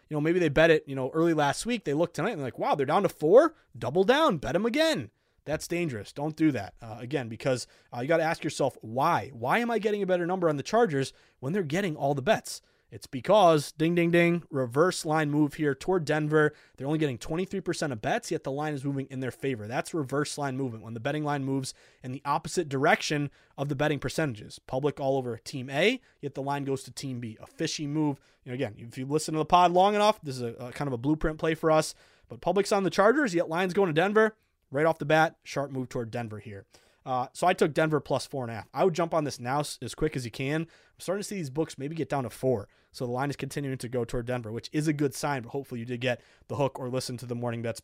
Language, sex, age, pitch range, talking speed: English, male, 20-39, 125-165 Hz, 265 wpm